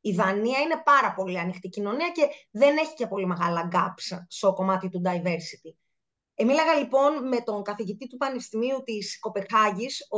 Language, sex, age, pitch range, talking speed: Greek, female, 20-39, 200-295 Hz, 165 wpm